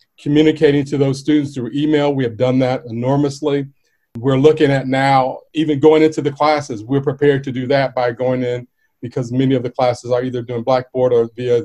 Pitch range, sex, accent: 125-145 Hz, male, American